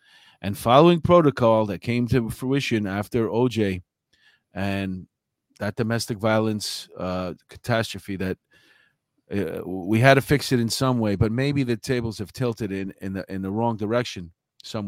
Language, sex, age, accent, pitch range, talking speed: English, male, 40-59, American, 105-135 Hz, 150 wpm